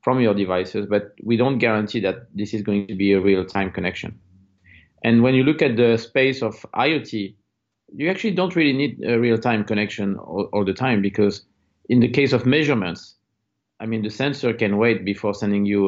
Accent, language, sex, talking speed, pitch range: French, English, male, 195 wpm, 100-120 Hz